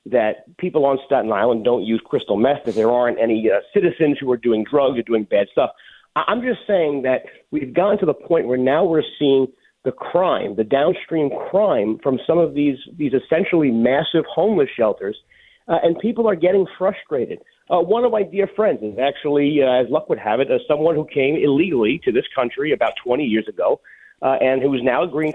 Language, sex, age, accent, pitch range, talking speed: English, male, 40-59, American, 140-215 Hz, 210 wpm